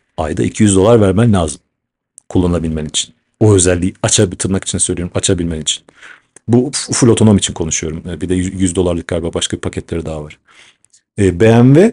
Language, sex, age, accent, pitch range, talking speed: Turkish, male, 40-59, native, 95-125 Hz, 150 wpm